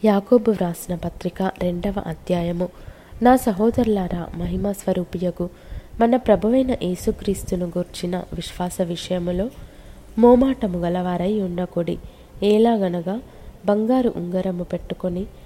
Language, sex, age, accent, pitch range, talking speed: Telugu, female, 20-39, native, 175-210 Hz, 85 wpm